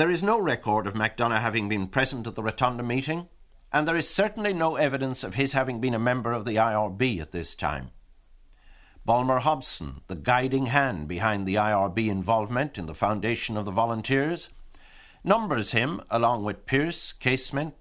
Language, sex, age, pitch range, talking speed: English, male, 60-79, 105-140 Hz, 175 wpm